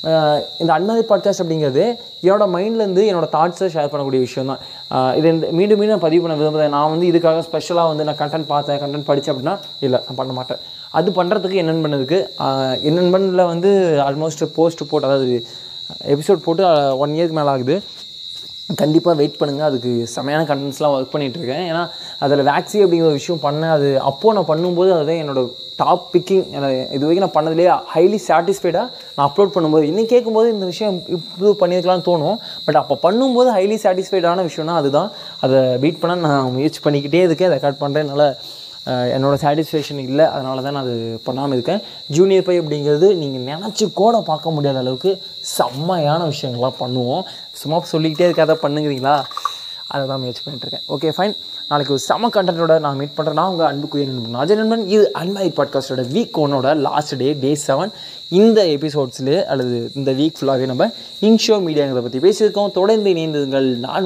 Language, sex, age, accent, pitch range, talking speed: Tamil, male, 20-39, native, 140-180 Hz, 160 wpm